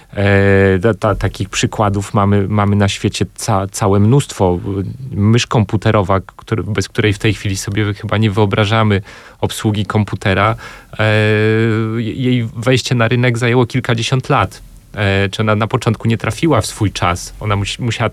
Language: Polish